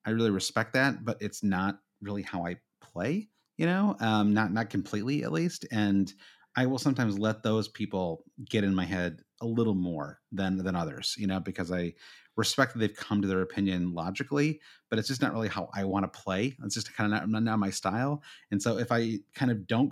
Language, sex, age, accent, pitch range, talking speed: English, male, 30-49, American, 95-125 Hz, 220 wpm